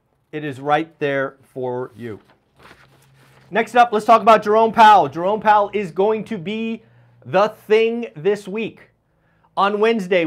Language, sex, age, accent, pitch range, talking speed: English, male, 40-59, American, 145-195 Hz, 145 wpm